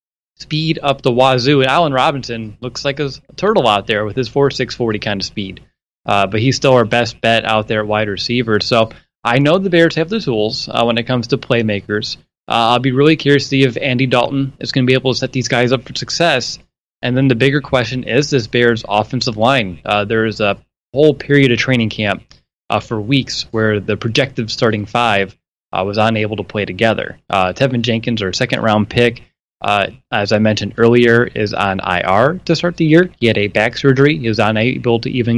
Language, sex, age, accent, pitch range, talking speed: English, male, 20-39, American, 110-135 Hz, 220 wpm